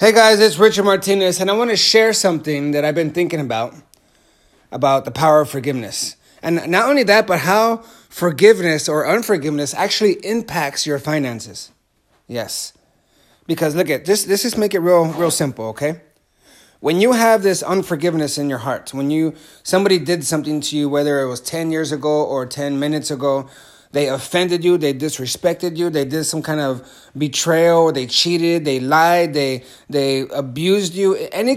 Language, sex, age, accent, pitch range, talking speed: English, male, 30-49, American, 145-180 Hz, 175 wpm